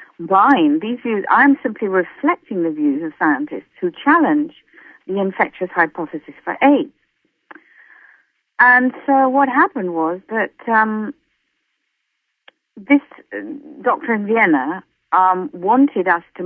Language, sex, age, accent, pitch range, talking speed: English, female, 50-69, British, 170-260 Hz, 115 wpm